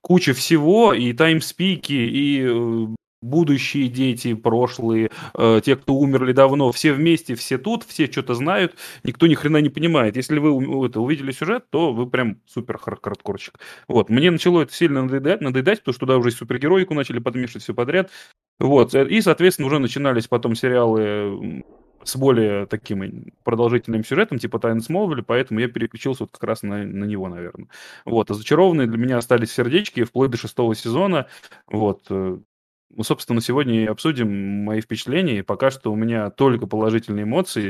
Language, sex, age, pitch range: Russian, male, 20-39, 110-140 Hz